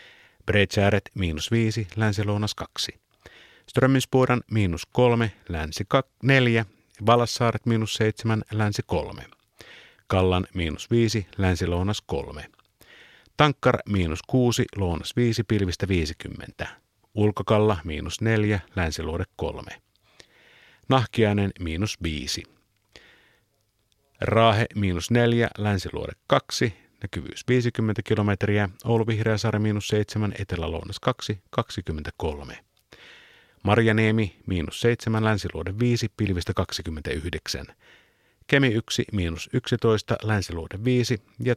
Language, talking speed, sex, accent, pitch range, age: Finnish, 75 wpm, male, native, 95-115 Hz, 50-69